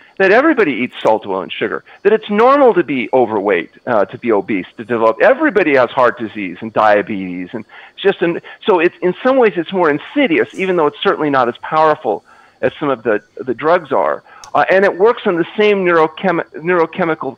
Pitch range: 130-200 Hz